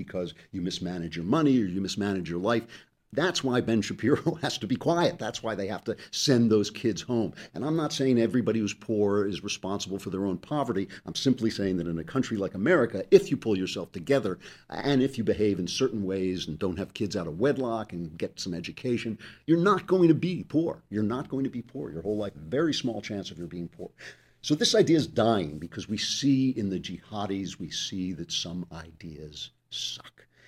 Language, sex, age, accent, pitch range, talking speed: English, male, 50-69, American, 90-130 Hz, 220 wpm